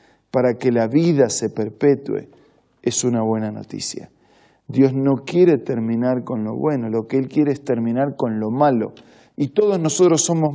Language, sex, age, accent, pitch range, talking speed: Spanish, male, 40-59, Argentinian, 120-145 Hz, 170 wpm